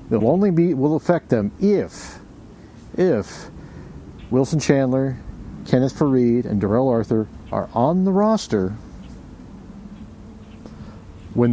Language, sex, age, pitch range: English, male, 50-69, 105-135 Hz